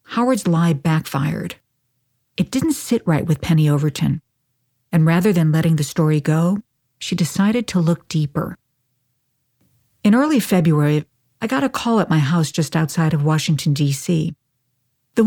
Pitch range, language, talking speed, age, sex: 135-180 Hz, English, 150 wpm, 50-69, female